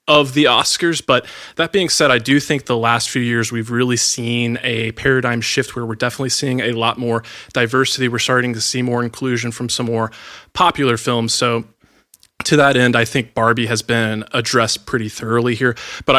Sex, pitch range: male, 115-125 Hz